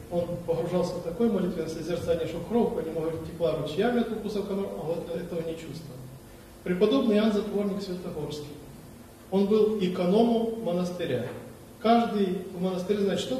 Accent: native